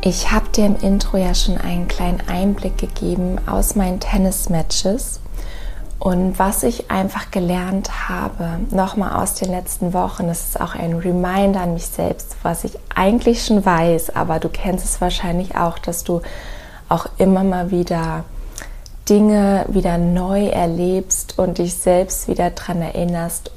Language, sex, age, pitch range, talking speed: German, female, 20-39, 170-195 Hz, 155 wpm